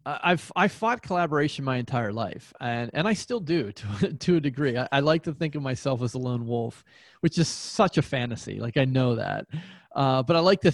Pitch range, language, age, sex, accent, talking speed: 120-150 Hz, English, 30-49, male, American, 230 wpm